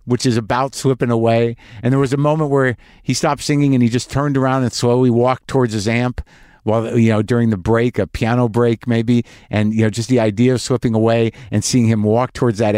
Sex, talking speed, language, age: male, 235 wpm, English, 50-69